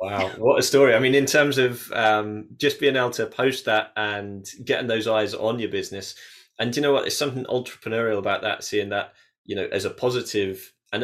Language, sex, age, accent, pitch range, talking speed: English, male, 20-39, British, 100-125 Hz, 225 wpm